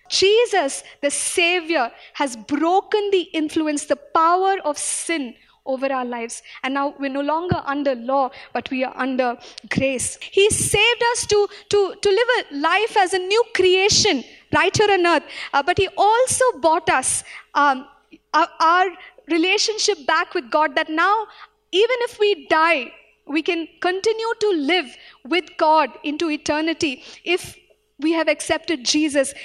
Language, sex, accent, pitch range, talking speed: English, female, Indian, 295-385 Hz, 155 wpm